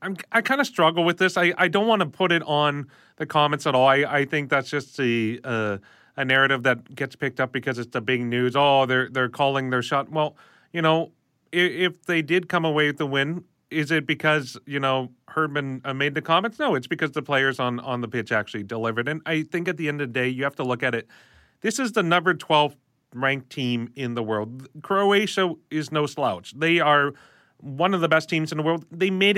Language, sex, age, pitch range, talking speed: English, male, 30-49, 130-165 Hz, 235 wpm